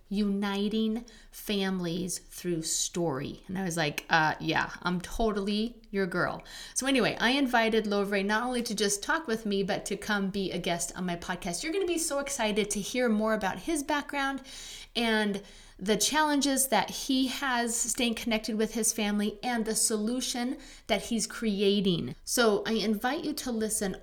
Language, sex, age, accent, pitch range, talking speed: English, female, 30-49, American, 205-250 Hz, 175 wpm